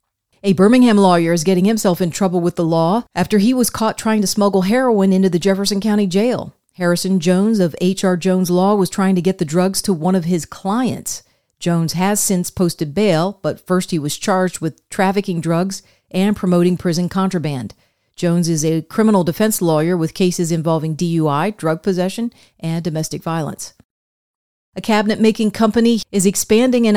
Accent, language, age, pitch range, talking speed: American, English, 40-59, 170-210 Hz, 175 wpm